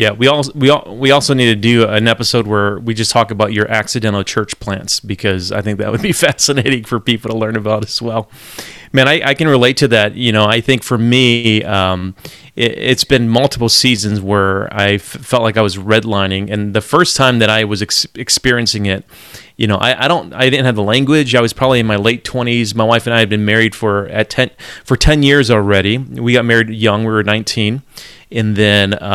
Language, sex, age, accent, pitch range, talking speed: English, male, 30-49, American, 105-125 Hz, 225 wpm